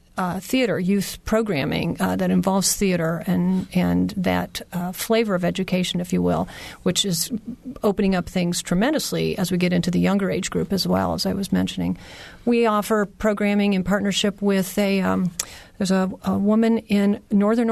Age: 40-59